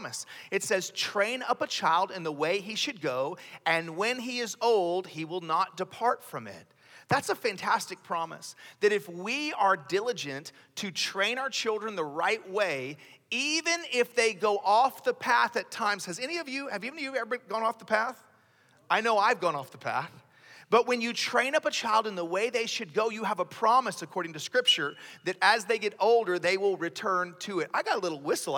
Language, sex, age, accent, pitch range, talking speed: English, male, 40-59, American, 180-250 Hz, 215 wpm